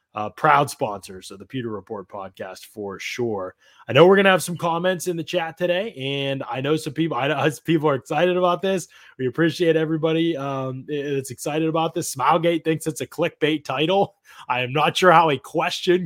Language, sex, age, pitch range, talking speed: English, male, 20-39, 130-160 Hz, 210 wpm